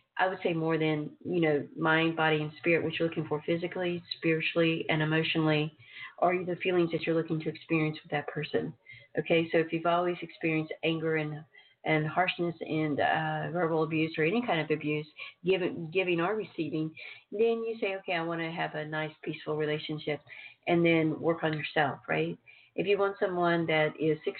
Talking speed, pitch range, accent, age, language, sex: 190 wpm, 155-175 Hz, American, 40-59, English, female